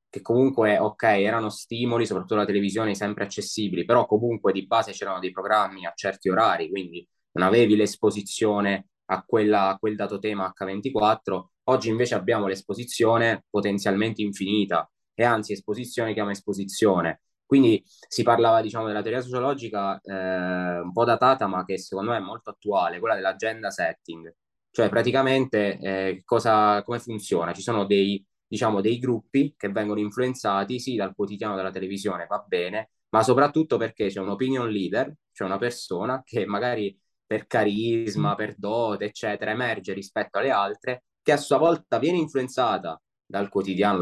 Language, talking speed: Italian, 155 wpm